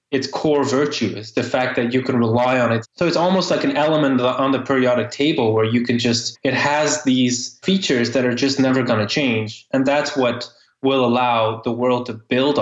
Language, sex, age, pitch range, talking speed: English, male, 20-39, 115-135 Hz, 220 wpm